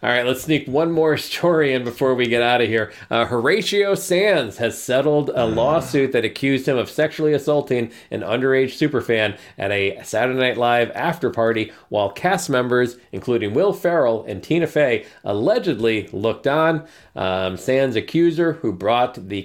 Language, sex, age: English, male, 40-59